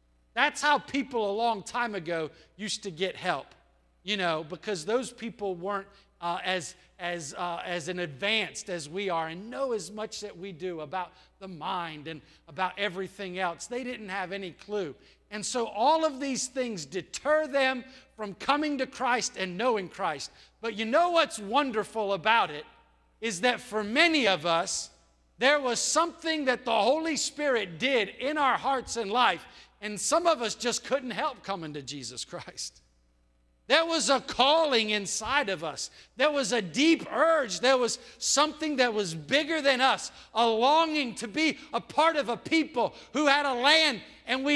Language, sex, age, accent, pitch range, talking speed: English, male, 50-69, American, 180-270 Hz, 175 wpm